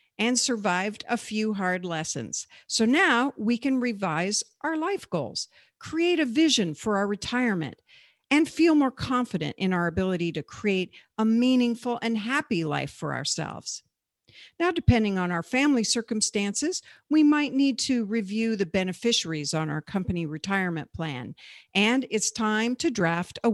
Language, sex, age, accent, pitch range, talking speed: English, female, 50-69, American, 175-250 Hz, 155 wpm